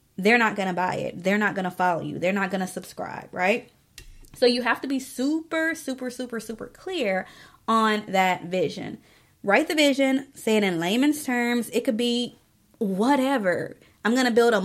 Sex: female